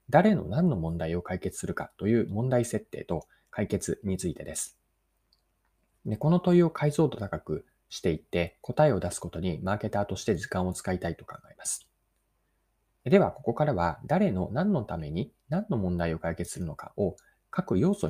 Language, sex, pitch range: Japanese, male, 90-150 Hz